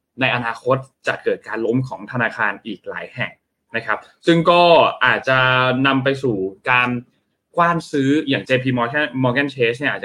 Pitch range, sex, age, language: 120-150 Hz, male, 20-39, Thai